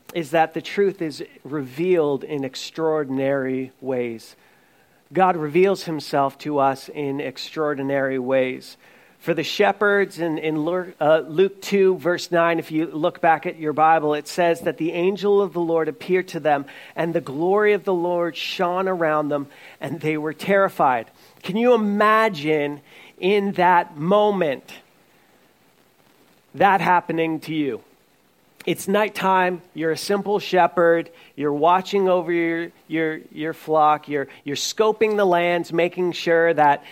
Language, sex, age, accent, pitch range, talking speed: English, male, 40-59, American, 155-185 Hz, 145 wpm